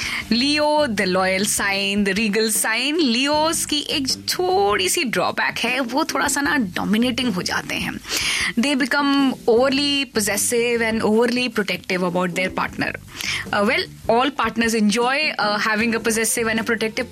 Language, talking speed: Hindi, 155 wpm